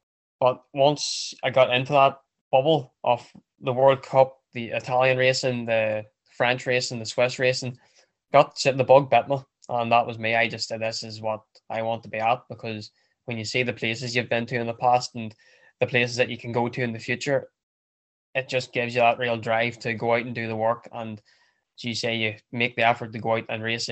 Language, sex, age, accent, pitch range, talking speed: English, male, 10-29, Irish, 115-125 Hz, 230 wpm